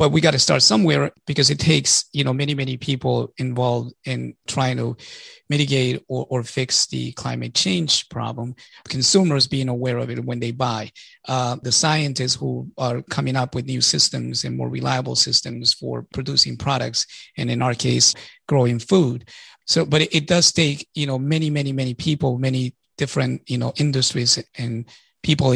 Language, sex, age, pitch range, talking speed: English, male, 30-49, 120-145 Hz, 180 wpm